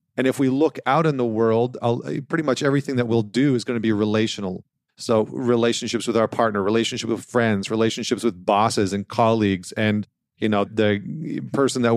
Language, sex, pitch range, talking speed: English, male, 115-135 Hz, 190 wpm